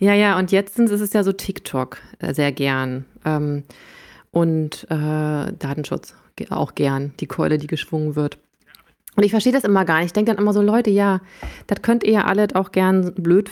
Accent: German